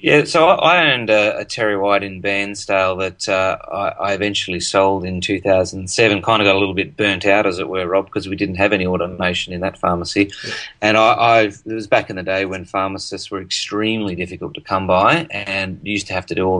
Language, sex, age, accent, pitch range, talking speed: English, male, 30-49, Australian, 95-105 Hz, 220 wpm